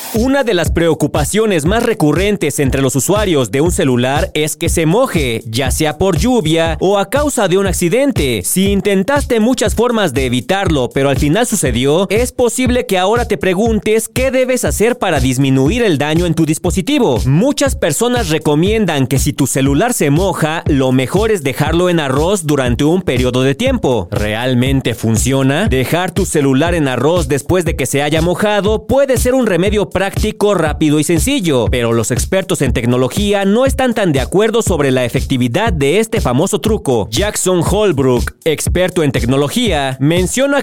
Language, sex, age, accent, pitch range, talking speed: Spanish, male, 40-59, Mexican, 140-210 Hz, 175 wpm